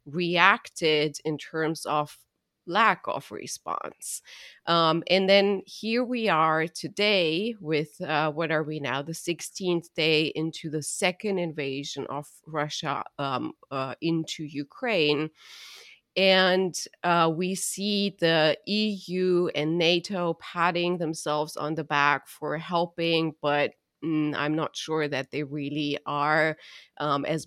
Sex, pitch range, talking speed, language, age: female, 150-180 Hz, 125 wpm, English, 30-49